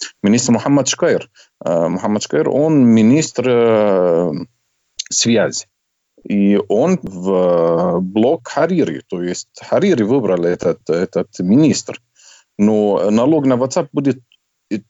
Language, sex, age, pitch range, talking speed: Russian, male, 40-59, 100-155 Hz, 95 wpm